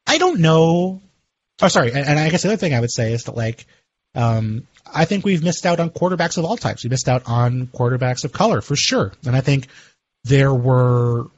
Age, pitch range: 30-49, 120-155 Hz